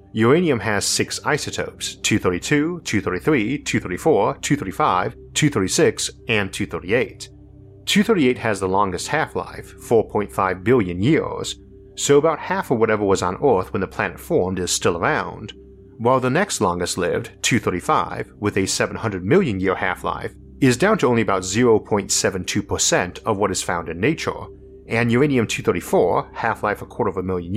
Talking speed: 145 wpm